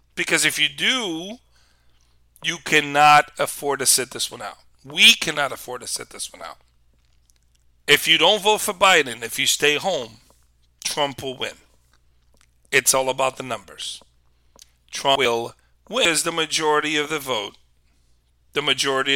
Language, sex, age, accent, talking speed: English, male, 40-59, American, 155 wpm